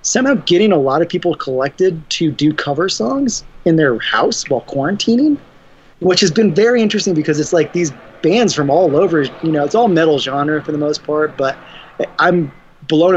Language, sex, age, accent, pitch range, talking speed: English, male, 20-39, American, 130-165 Hz, 190 wpm